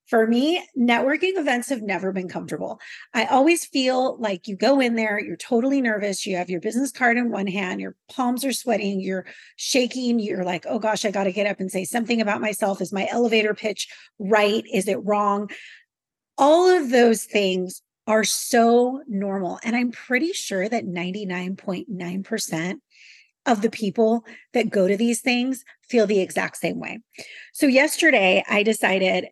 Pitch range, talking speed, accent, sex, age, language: 200-255 Hz, 175 wpm, American, female, 30-49, English